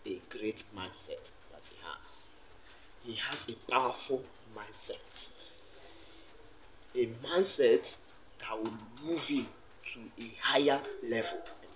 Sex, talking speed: male, 110 wpm